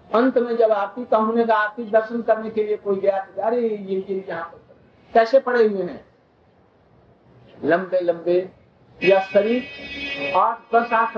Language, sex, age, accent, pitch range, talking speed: Hindi, male, 60-79, native, 195-235 Hz, 145 wpm